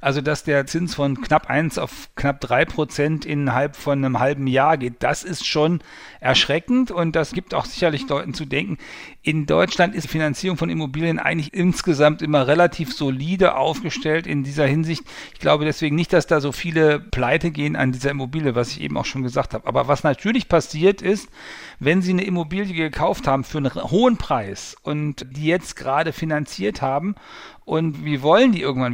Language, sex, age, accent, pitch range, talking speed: German, male, 50-69, German, 135-170 Hz, 190 wpm